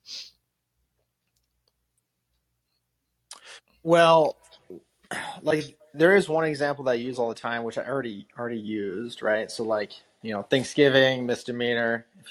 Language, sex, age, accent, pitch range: English, male, 30-49, American, 110-135 Hz